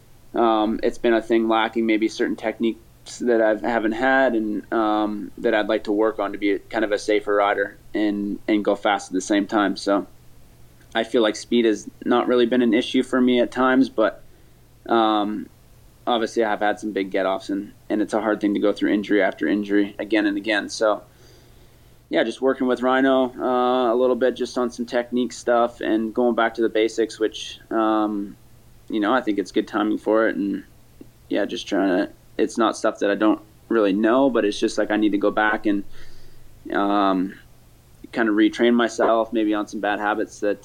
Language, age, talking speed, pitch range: English, 20-39, 210 wpm, 105-120 Hz